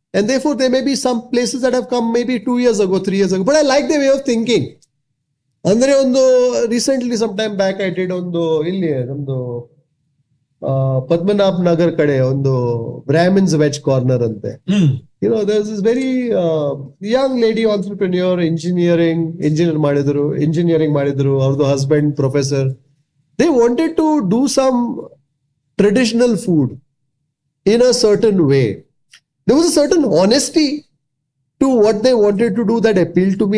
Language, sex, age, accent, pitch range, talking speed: Kannada, male, 30-49, native, 140-225 Hz, 155 wpm